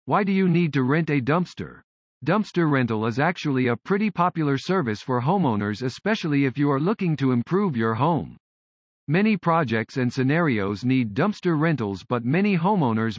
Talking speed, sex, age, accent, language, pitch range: 170 wpm, male, 50-69, American, English, 125-175 Hz